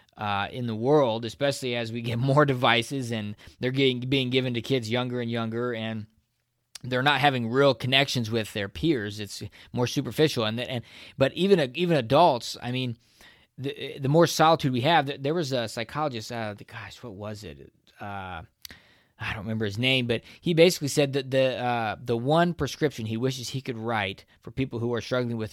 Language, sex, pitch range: English, male, 115-140 Hz